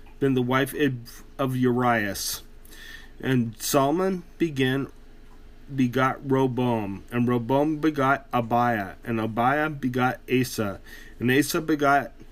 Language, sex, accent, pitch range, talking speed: English, male, American, 115-140 Hz, 95 wpm